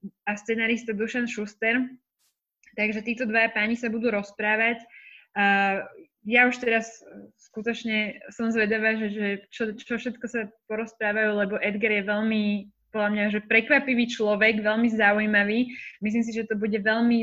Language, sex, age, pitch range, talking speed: Slovak, female, 20-39, 205-235 Hz, 145 wpm